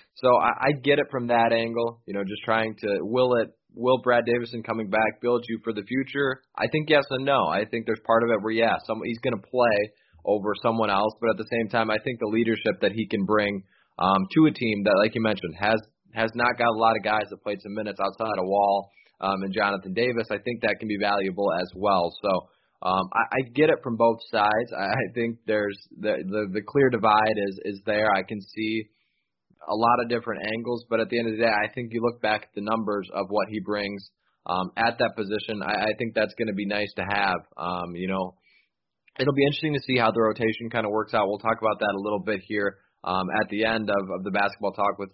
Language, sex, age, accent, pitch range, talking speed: English, male, 20-39, American, 105-115 Hz, 250 wpm